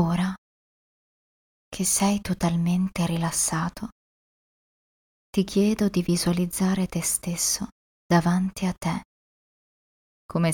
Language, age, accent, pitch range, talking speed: Italian, 20-39, native, 165-190 Hz, 85 wpm